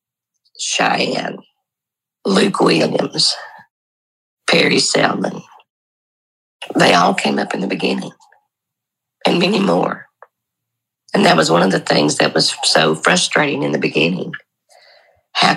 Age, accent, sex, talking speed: 50-69, American, female, 115 wpm